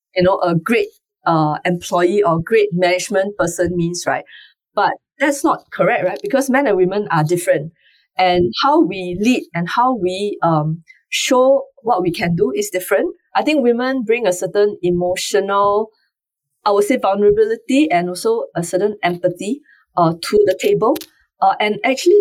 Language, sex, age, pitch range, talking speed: English, female, 20-39, 175-270 Hz, 165 wpm